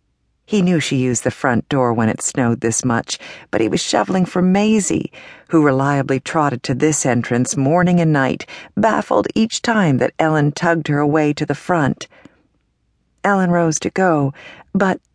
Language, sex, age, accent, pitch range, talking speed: English, female, 50-69, American, 135-180 Hz, 170 wpm